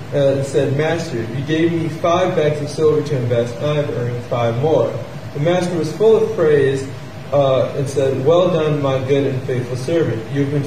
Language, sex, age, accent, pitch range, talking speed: English, male, 30-49, American, 125-155 Hz, 215 wpm